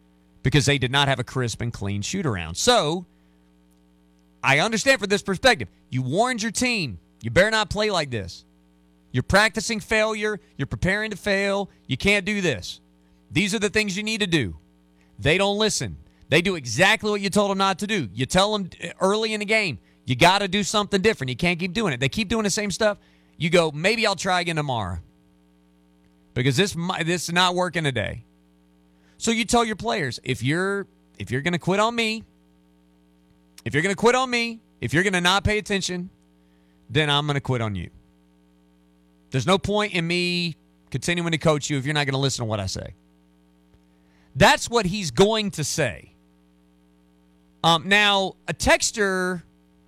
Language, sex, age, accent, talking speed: English, male, 40-59, American, 190 wpm